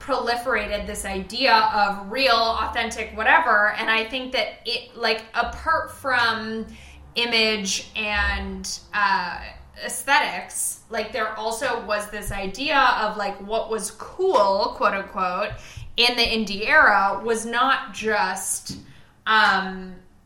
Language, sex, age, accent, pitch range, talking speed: English, female, 10-29, American, 195-235 Hz, 120 wpm